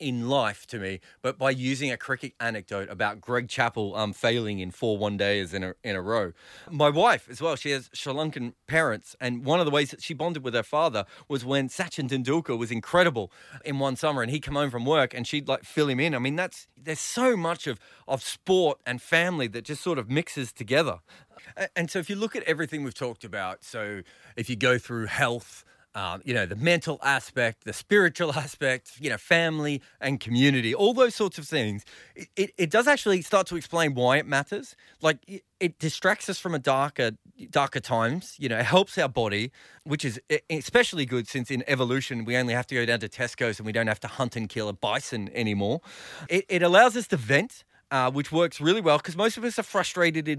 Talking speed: 225 wpm